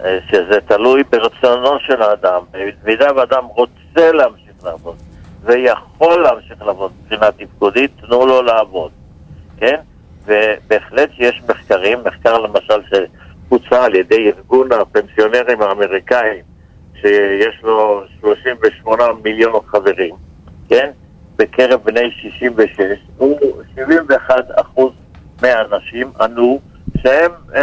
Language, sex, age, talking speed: Hebrew, male, 60-79, 100 wpm